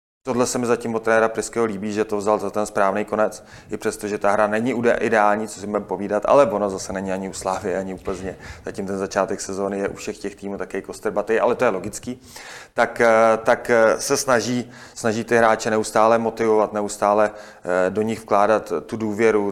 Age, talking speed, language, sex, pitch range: 30-49, 200 wpm, Czech, male, 100-110 Hz